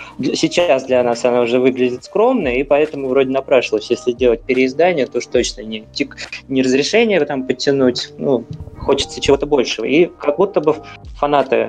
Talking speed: 160 wpm